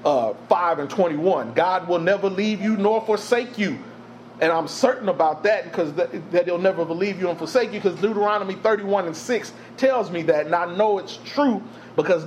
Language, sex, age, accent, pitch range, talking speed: English, male, 30-49, American, 150-205 Hz, 195 wpm